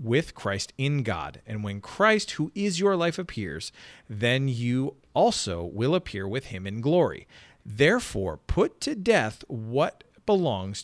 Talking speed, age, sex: 150 wpm, 40-59, male